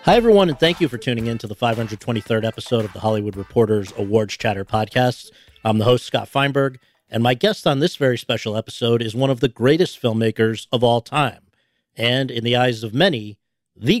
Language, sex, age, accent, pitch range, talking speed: English, male, 50-69, American, 110-140 Hz, 205 wpm